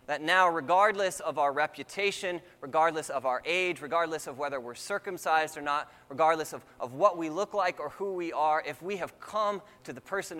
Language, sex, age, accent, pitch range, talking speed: English, male, 20-39, American, 100-165 Hz, 200 wpm